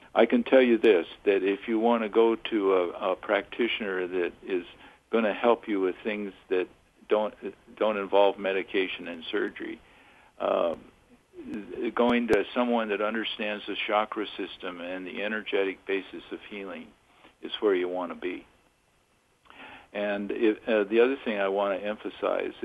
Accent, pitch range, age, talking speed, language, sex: American, 95-120 Hz, 60-79, 160 wpm, English, male